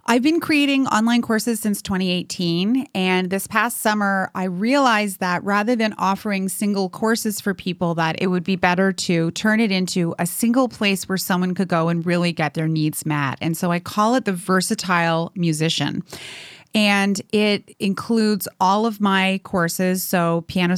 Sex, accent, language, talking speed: female, American, English, 175 wpm